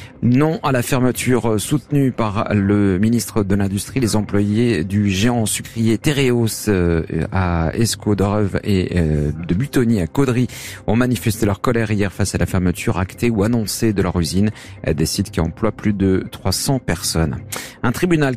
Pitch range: 95-120 Hz